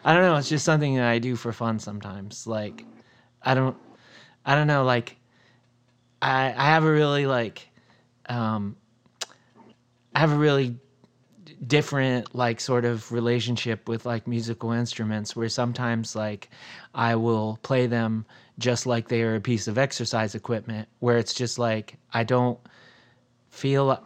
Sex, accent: male, American